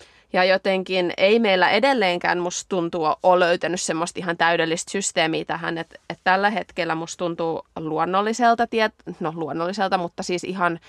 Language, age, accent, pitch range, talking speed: Finnish, 20-39, native, 165-190 Hz, 150 wpm